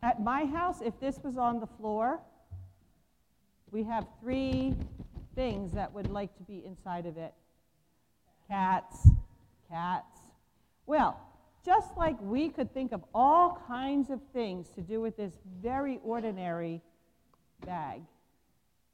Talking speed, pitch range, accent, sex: 130 wpm, 185-260 Hz, American, female